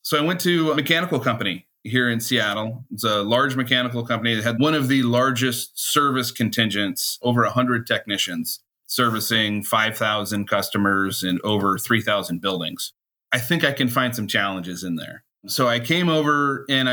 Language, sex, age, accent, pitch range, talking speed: English, male, 30-49, American, 110-130 Hz, 165 wpm